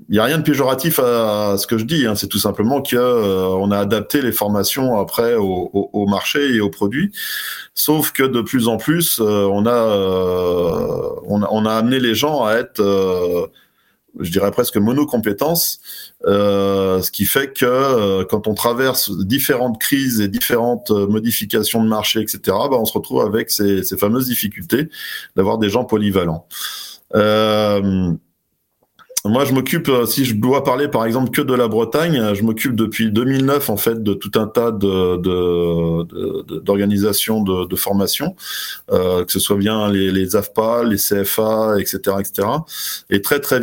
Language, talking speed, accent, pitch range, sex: French, 180 wpm, French, 100-120 Hz, male